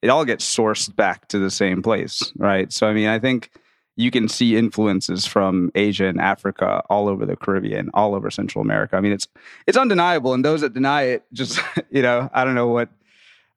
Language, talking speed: English, 215 wpm